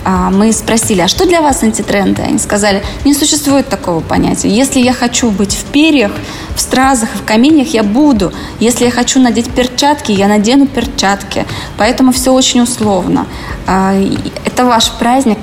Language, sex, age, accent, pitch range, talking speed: Russian, female, 20-39, native, 200-245 Hz, 160 wpm